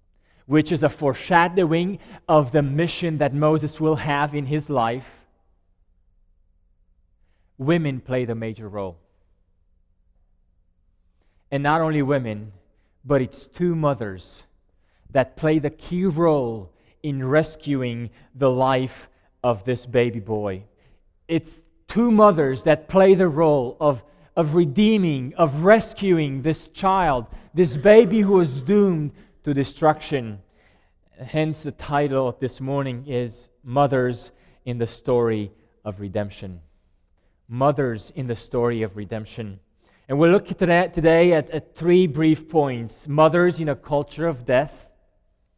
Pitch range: 105-155 Hz